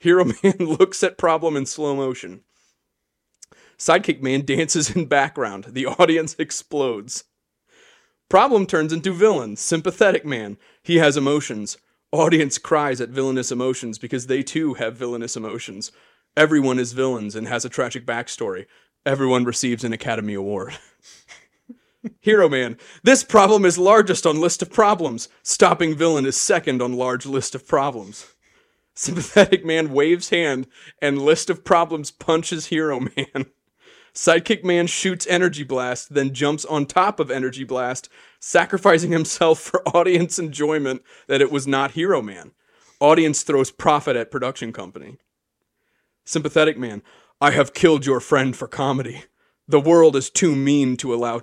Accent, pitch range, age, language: American, 130-170 Hz, 30-49, English